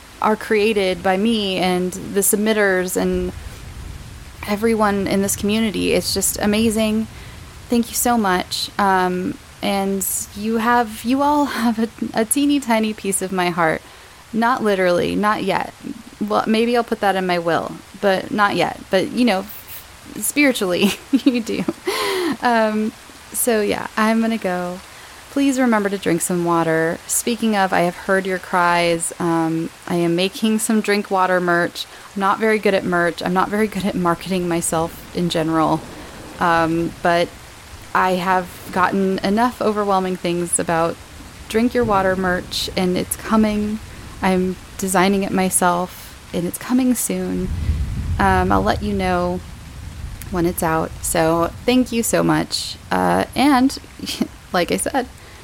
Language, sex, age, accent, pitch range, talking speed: English, female, 20-39, American, 170-220 Hz, 150 wpm